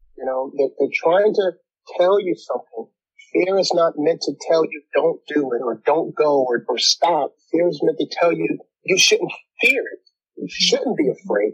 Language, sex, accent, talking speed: English, male, American, 200 wpm